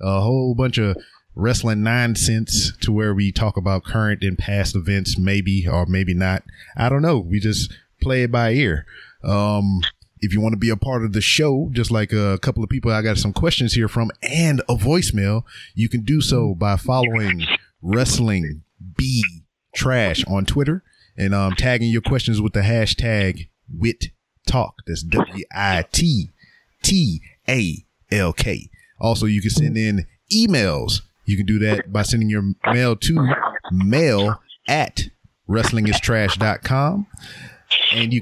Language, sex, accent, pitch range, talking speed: English, male, American, 100-120 Hz, 160 wpm